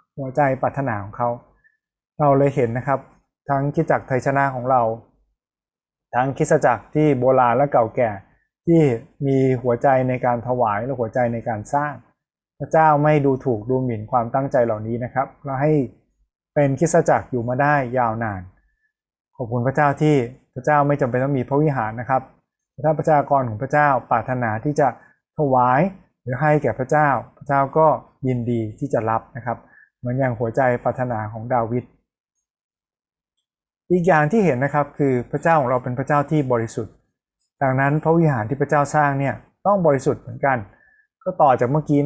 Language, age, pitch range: Thai, 20-39, 125-150 Hz